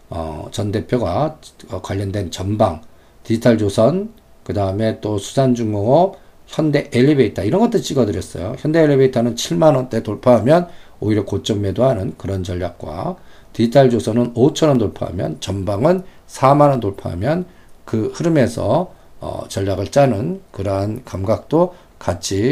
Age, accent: 50-69, native